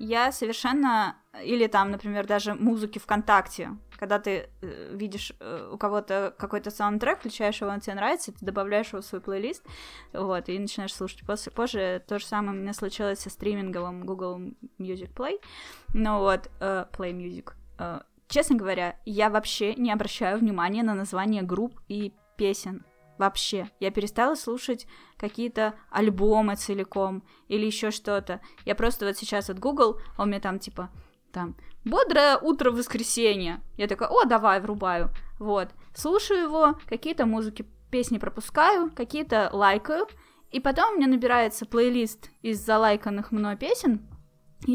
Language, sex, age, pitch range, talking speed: Russian, female, 10-29, 200-245 Hz, 150 wpm